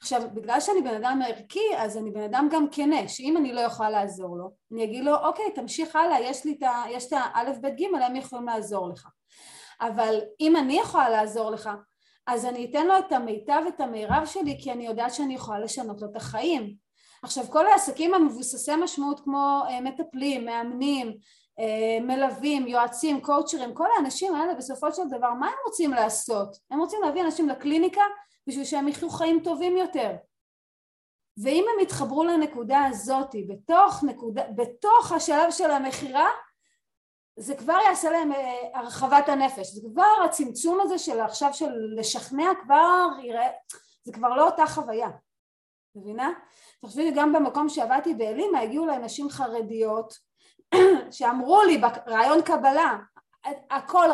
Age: 30-49